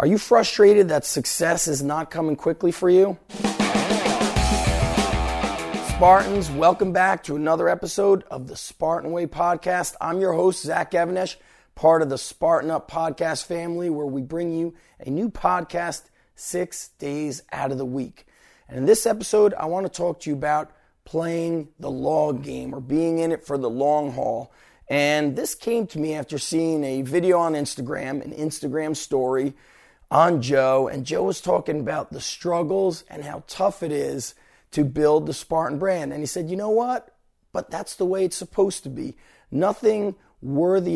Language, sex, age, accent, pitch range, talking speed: English, male, 30-49, American, 145-180 Hz, 175 wpm